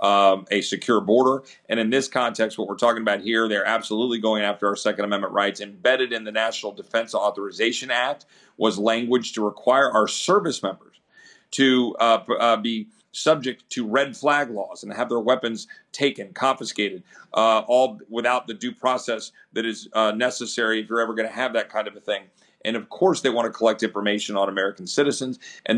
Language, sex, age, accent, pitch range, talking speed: English, male, 40-59, American, 110-120 Hz, 195 wpm